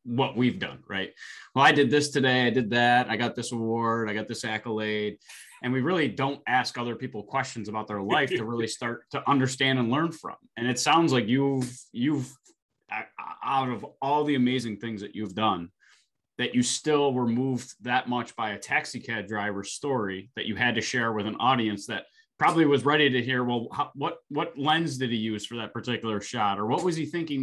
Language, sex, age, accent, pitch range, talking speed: English, male, 20-39, American, 110-135 Hz, 210 wpm